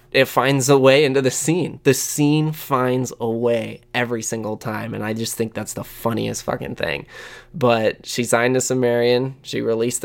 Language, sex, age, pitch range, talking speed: English, male, 20-39, 115-130 Hz, 185 wpm